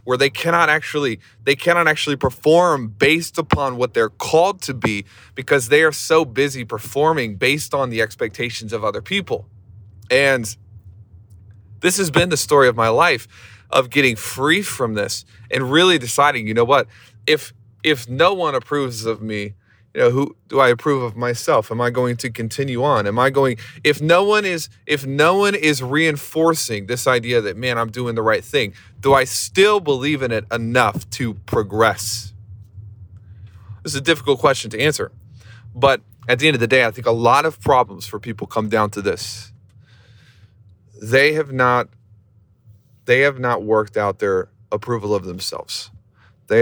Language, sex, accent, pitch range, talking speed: English, male, American, 105-140 Hz, 180 wpm